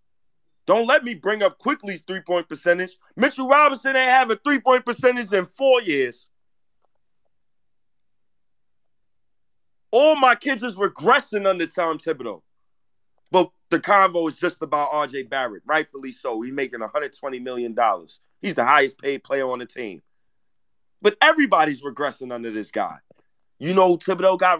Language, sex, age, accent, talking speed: English, male, 30-49, American, 140 wpm